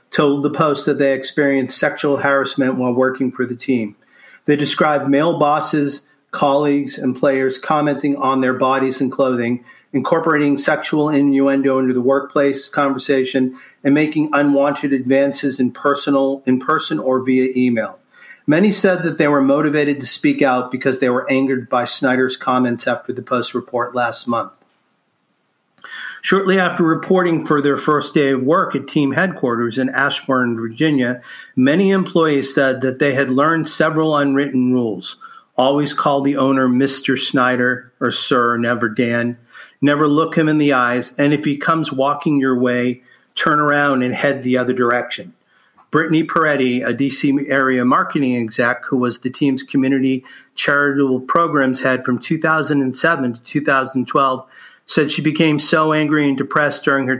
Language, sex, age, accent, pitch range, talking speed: English, male, 40-59, American, 130-150 Hz, 155 wpm